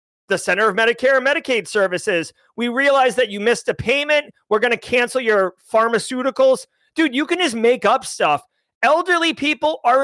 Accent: American